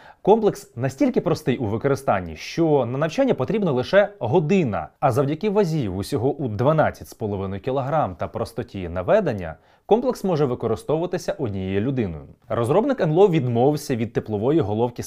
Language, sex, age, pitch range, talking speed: Ukrainian, male, 20-39, 110-180 Hz, 125 wpm